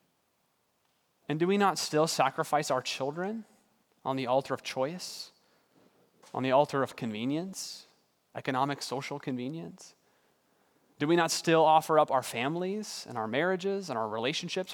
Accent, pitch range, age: American, 130-165 Hz, 30-49